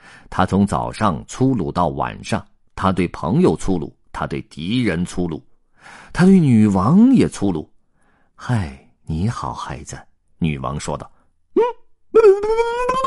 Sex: male